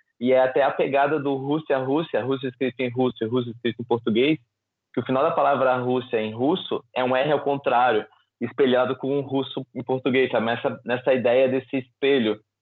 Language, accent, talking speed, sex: Portuguese, Brazilian, 200 wpm, male